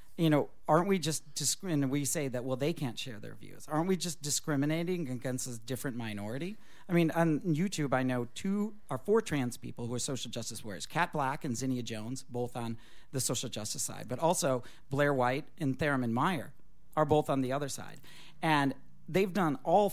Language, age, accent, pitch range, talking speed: English, 40-59, American, 125-155 Hz, 205 wpm